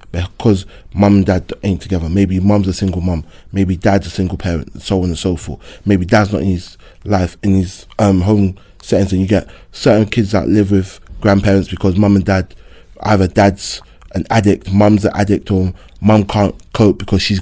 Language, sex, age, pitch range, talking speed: English, male, 20-39, 95-110 Hz, 205 wpm